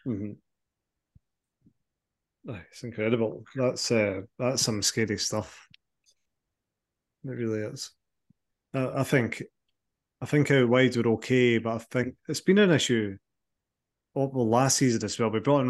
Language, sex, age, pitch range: English, male, 30-49, 110-130 Hz